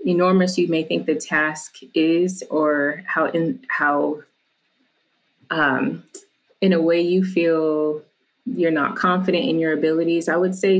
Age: 30-49